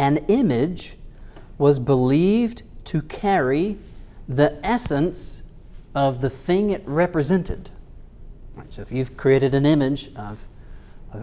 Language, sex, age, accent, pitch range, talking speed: English, male, 40-59, American, 115-170 Hz, 120 wpm